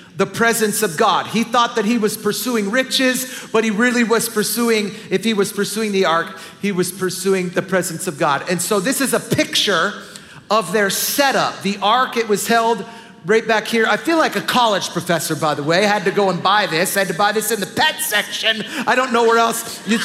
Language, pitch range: English, 190-245 Hz